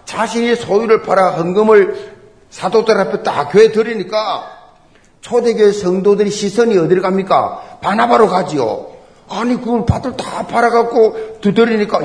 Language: Korean